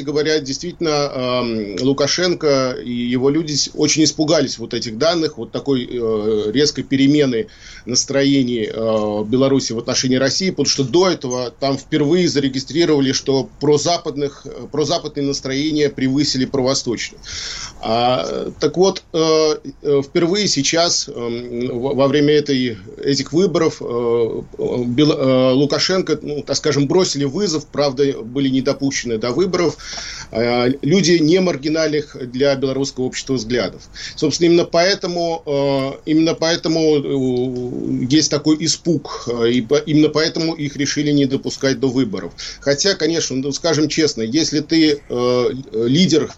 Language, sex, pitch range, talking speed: Russian, male, 130-155 Hz, 105 wpm